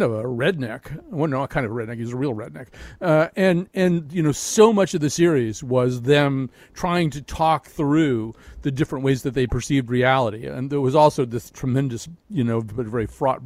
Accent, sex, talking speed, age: American, male, 200 wpm, 40-59